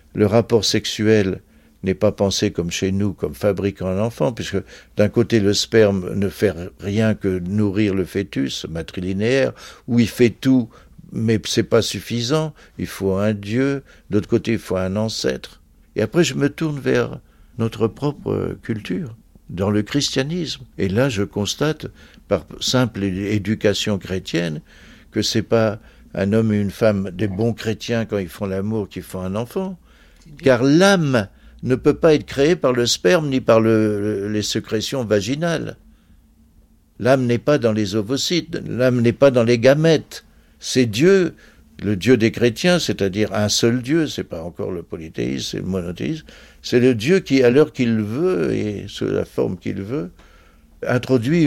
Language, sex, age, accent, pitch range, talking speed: French, male, 60-79, French, 100-135 Hz, 175 wpm